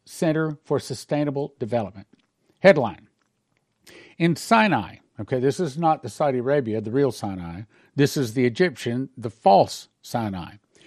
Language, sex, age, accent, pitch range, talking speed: English, male, 50-69, American, 125-175 Hz, 135 wpm